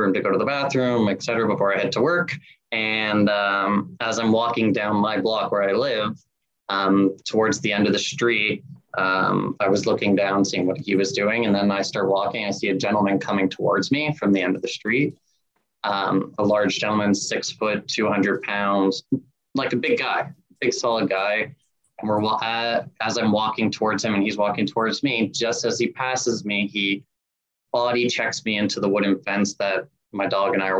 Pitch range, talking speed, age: 95-110 Hz, 205 wpm, 20-39